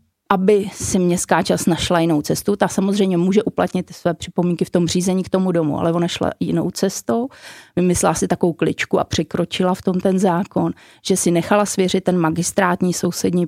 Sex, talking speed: female, 185 wpm